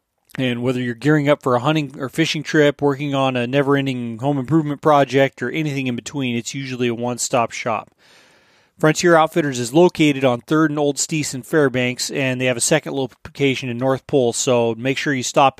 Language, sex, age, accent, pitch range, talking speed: English, male, 30-49, American, 125-140 Hz, 200 wpm